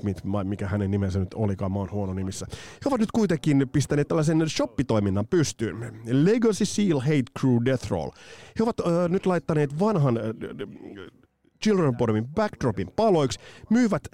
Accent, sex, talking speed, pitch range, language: native, male, 150 wpm, 100-150 Hz, Finnish